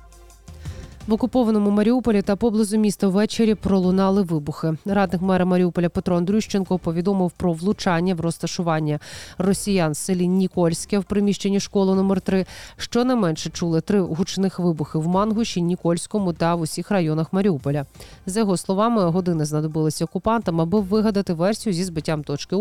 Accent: native